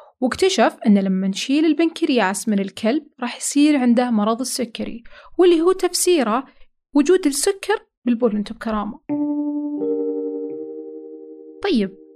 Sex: female